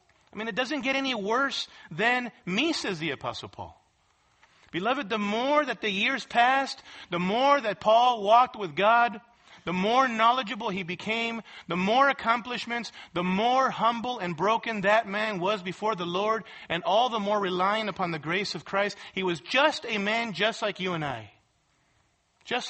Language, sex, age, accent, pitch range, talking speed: English, male, 40-59, American, 195-255 Hz, 175 wpm